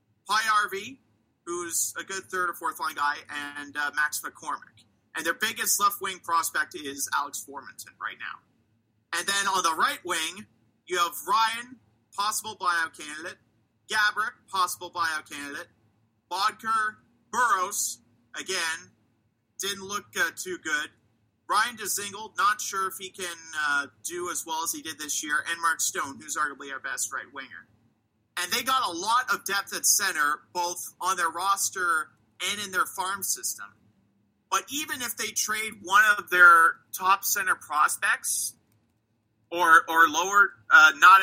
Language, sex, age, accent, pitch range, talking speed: English, male, 40-59, American, 135-205 Hz, 155 wpm